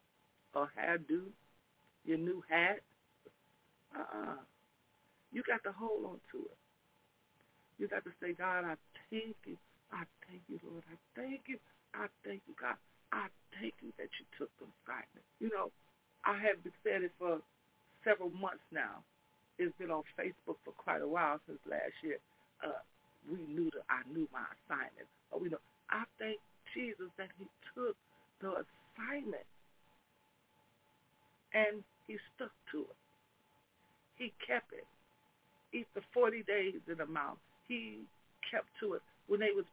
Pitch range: 185-250 Hz